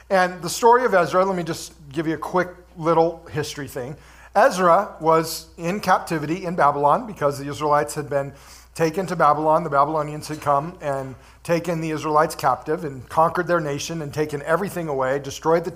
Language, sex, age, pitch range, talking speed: English, male, 40-59, 145-175 Hz, 185 wpm